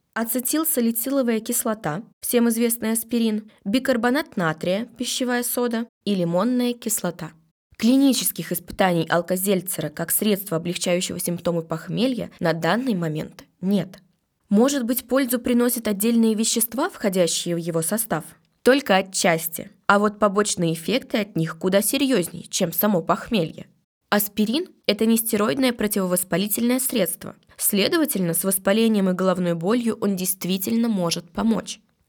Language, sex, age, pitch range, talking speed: Russian, female, 20-39, 180-235 Hz, 115 wpm